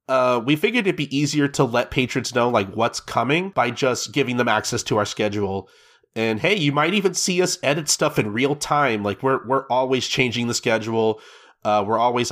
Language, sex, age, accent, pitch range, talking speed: English, male, 30-49, American, 110-145 Hz, 225 wpm